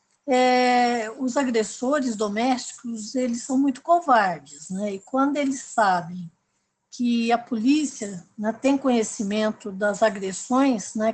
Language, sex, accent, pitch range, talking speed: Portuguese, female, Brazilian, 215-285 Hz, 120 wpm